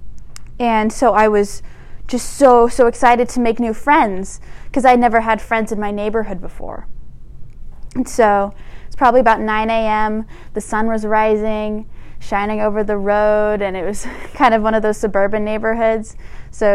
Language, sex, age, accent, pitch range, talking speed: English, female, 10-29, American, 210-250 Hz, 170 wpm